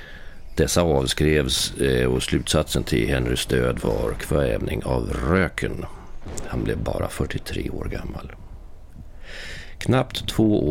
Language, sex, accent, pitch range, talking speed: Swedish, male, native, 65-95 Hz, 105 wpm